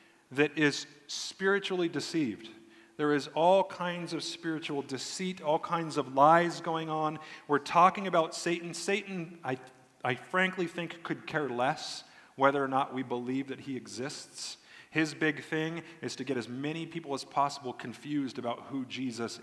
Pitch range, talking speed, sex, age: 135-165 Hz, 160 wpm, male, 40-59